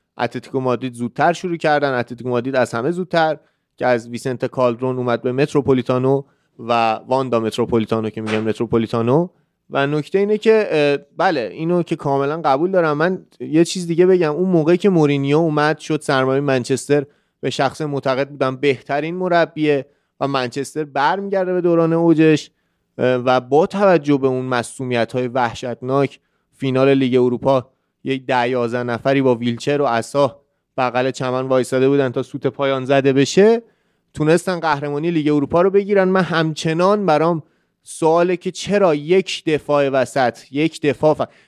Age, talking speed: 30-49, 150 wpm